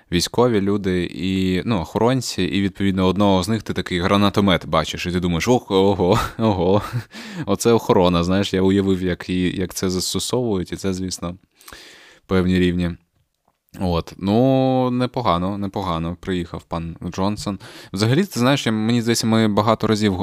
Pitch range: 85-110 Hz